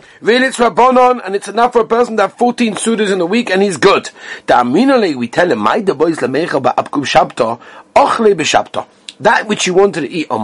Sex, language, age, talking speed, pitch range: male, English, 40-59, 185 wpm, 155-240 Hz